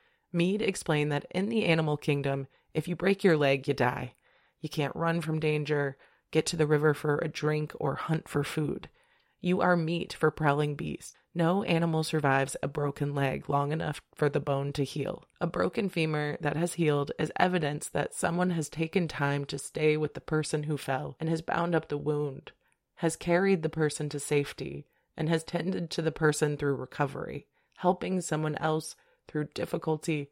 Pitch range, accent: 150-170 Hz, American